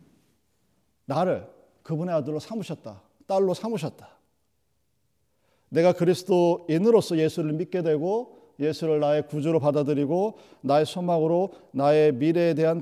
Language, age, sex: Korean, 40-59, male